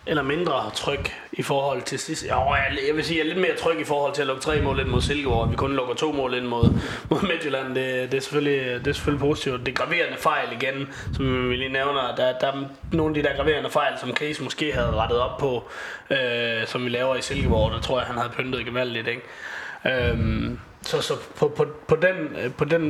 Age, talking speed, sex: 20-39, 230 wpm, male